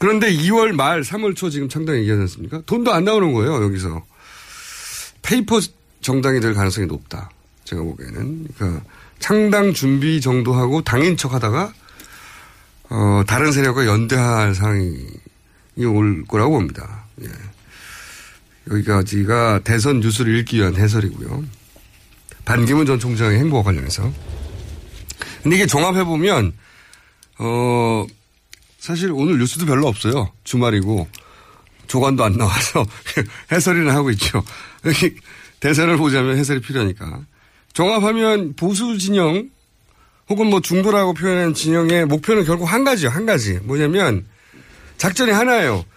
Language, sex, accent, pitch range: Korean, male, native, 105-175 Hz